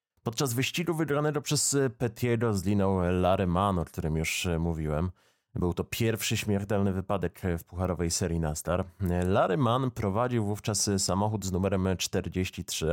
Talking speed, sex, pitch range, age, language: 135 wpm, male, 90-115 Hz, 30-49, Polish